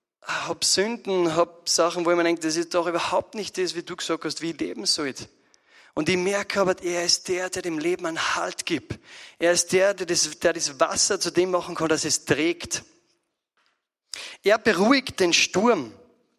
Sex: male